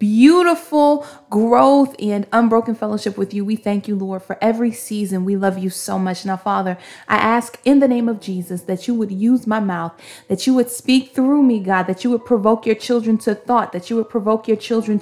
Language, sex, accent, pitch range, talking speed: English, female, American, 195-230 Hz, 220 wpm